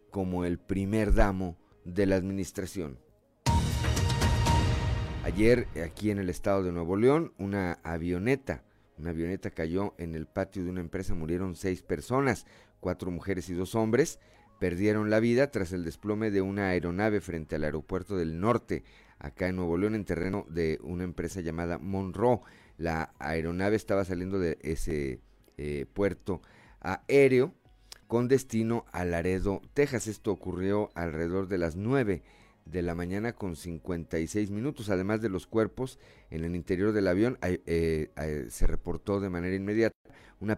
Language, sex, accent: Spanish, male, Mexican